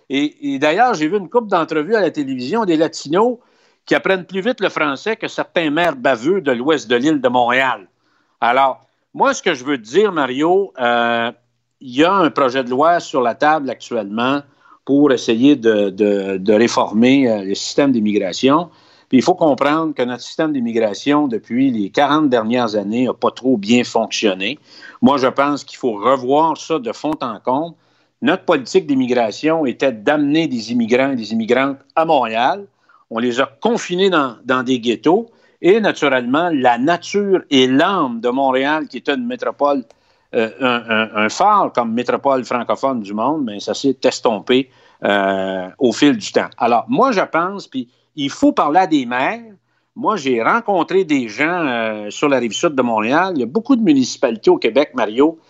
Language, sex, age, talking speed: French, male, 50-69, 185 wpm